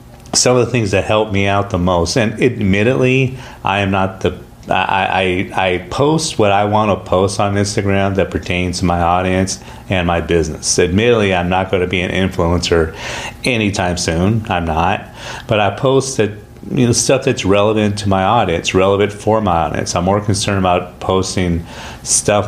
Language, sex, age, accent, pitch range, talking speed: English, male, 40-59, American, 85-105 Hz, 180 wpm